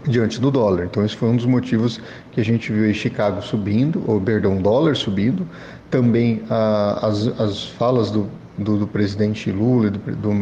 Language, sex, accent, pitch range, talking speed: Portuguese, male, Brazilian, 105-125 Hz, 180 wpm